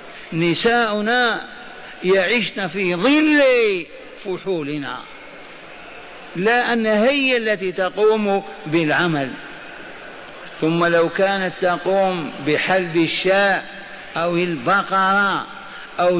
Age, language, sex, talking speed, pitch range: 50-69, Arabic, male, 75 wpm, 170-205 Hz